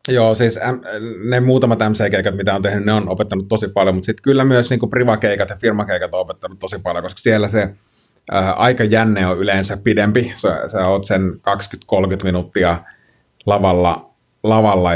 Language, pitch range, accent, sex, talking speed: Finnish, 90-110 Hz, native, male, 160 wpm